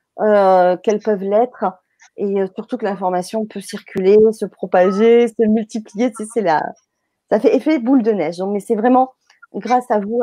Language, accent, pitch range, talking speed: French, French, 215-265 Hz, 190 wpm